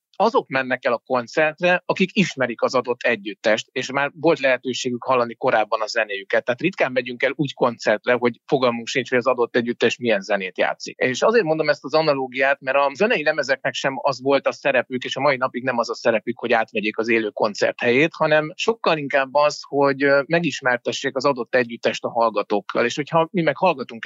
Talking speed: 195 wpm